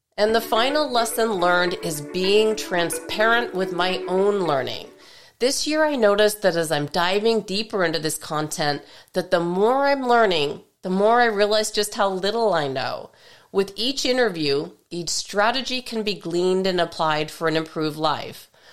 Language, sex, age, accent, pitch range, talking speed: English, female, 40-59, American, 170-220 Hz, 165 wpm